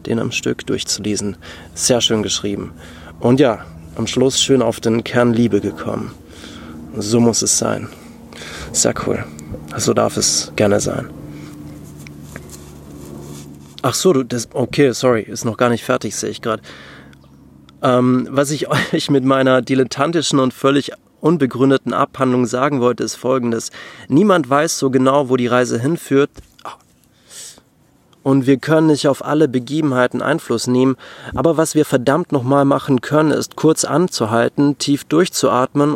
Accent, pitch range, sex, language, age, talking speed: German, 110-140 Hz, male, German, 30-49, 145 wpm